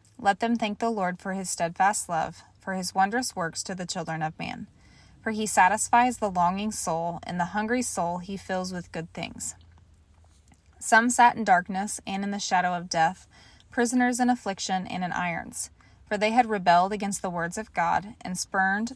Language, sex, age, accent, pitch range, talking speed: English, female, 20-39, American, 170-210 Hz, 190 wpm